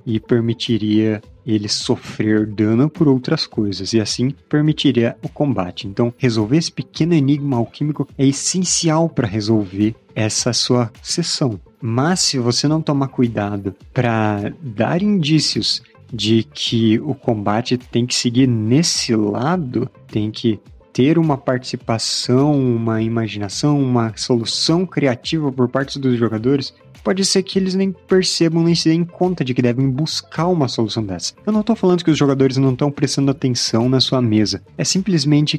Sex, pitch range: male, 115-150 Hz